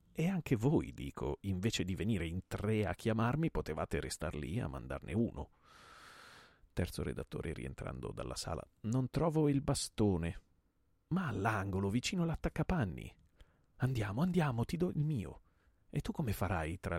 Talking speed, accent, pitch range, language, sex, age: 145 wpm, native, 85-125 Hz, Italian, male, 40-59